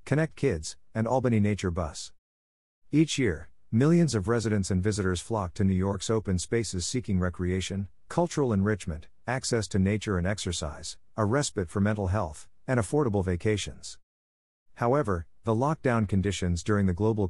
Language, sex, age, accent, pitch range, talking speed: English, male, 50-69, American, 90-115 Hz, 150 wpm